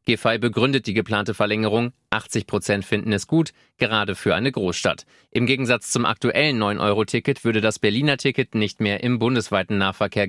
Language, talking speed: German, 155 wpm